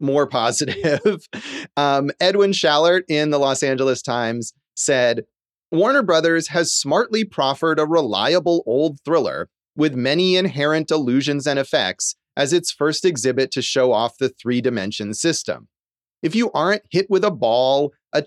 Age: 30-49